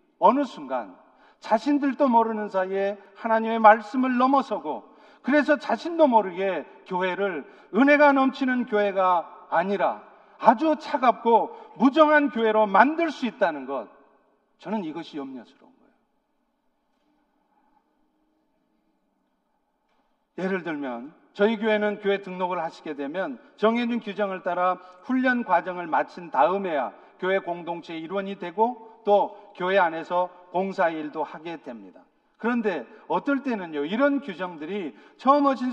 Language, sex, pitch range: Korean, male, 190-265 Hz